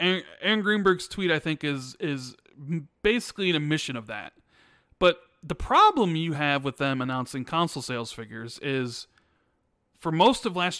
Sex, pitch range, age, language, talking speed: male, 130-180 Hz, 30-49, English, 155 wpm